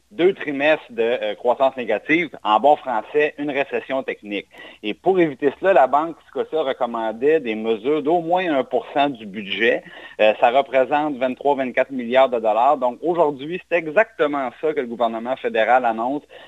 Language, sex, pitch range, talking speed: French, male, 130-175 Hz, 160 wpm